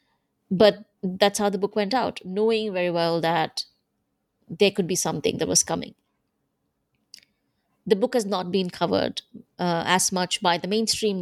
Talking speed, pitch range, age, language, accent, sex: 160 wpm, 175-210 Hz, 20-39, English, Indian, female